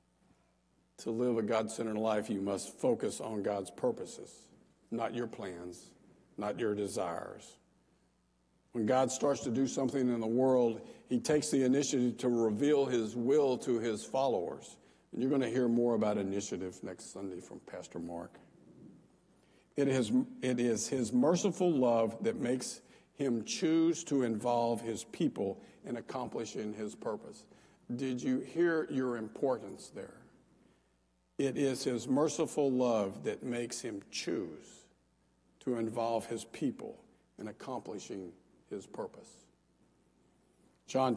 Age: 60-79